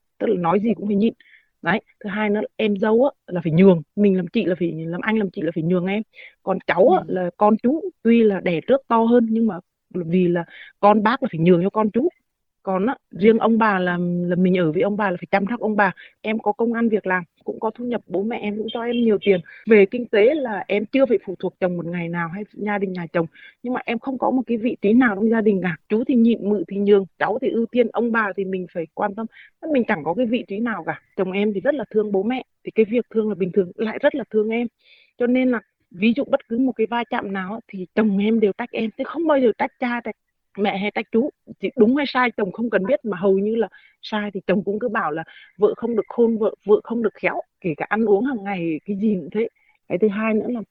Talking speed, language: 280 wpm, Vietnamese